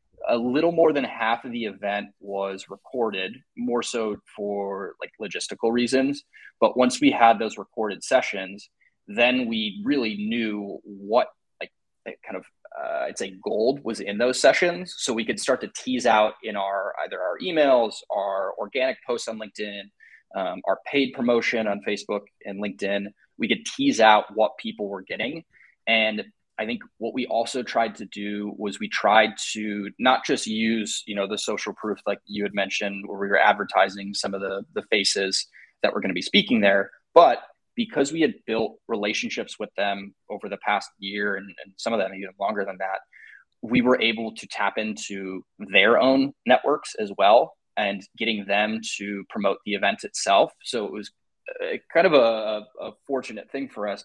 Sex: male